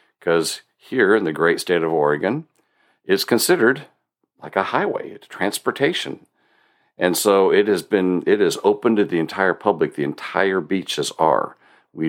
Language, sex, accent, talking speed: English, male, American, 160 wpm